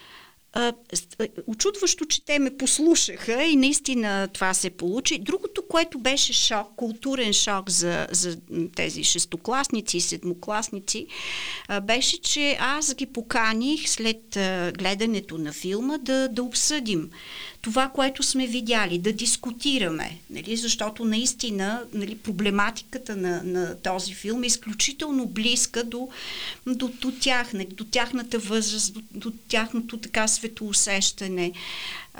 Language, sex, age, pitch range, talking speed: Bulgarian, female, 50-69, 190-250 Hz, 115 wpm